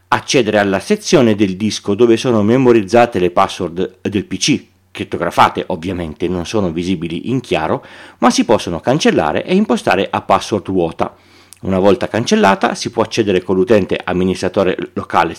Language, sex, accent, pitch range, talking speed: Italian, male, native, 90-120 Hz, 150 wpm